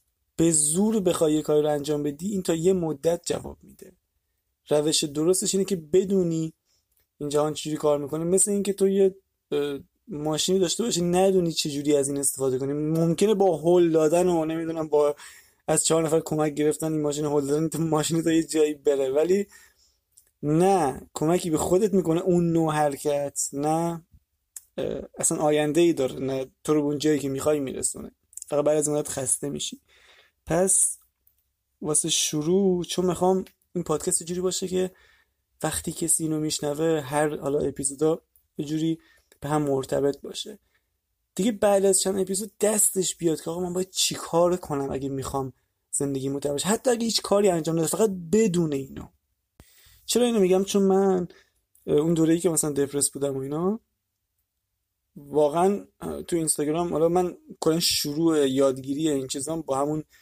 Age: 20-39